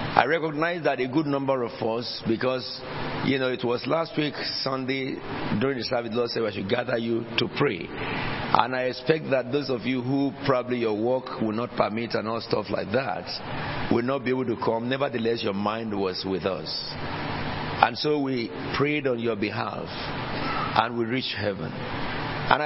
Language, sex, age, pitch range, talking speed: English, male, 50-69, 115-140 Hz, 190 wpm